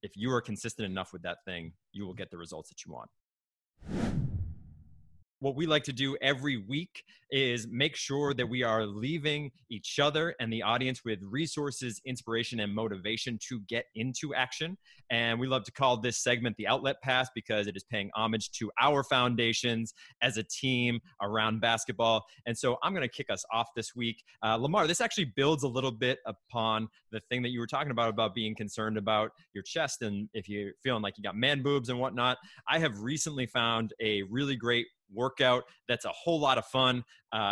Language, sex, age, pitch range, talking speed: English, male, 20-39, 110-130 Hz, 200 wpm